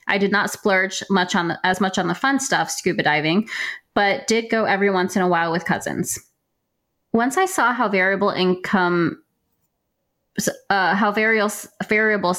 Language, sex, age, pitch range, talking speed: English, female, 20-39, 175-210 Hz, 170 wpm